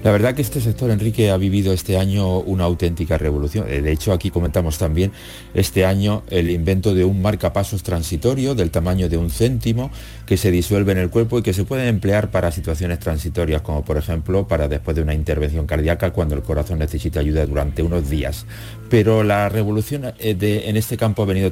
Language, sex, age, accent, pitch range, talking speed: Spanish, male, 40-59, Spanish, 80-105 Hz, 200 wpm